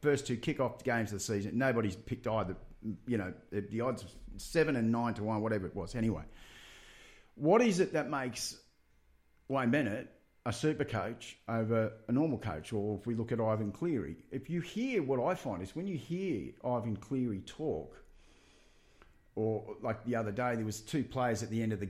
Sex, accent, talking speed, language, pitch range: male, Australian, 195 wpm, English, 100-125 Hz